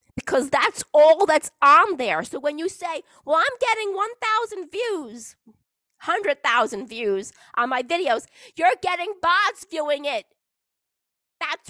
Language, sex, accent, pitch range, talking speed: English, female, American, 230-350 Hz, 135 wpm